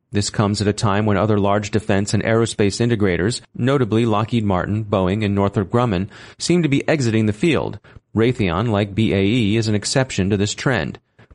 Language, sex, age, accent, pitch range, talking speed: English, male, 30-49, American, 105-120 Hz, 180 wpm